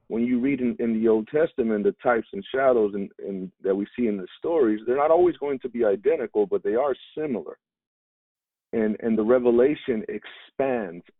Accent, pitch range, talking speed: American, 105-150 Hz, 195 wpm